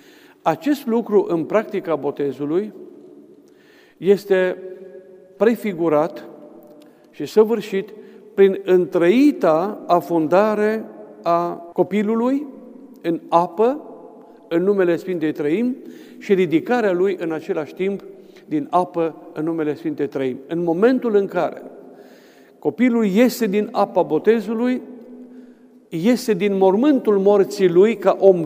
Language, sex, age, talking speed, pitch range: Romanian, male, 50-69, 100 wpm, 170-235 Hz